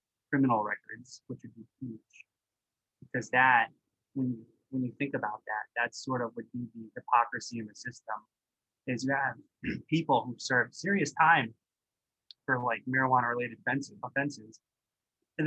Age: 20-39